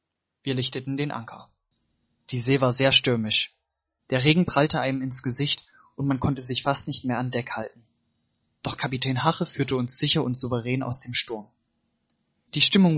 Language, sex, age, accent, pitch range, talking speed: German, male, 20-39, German, 120-155 Hz, 175 wpm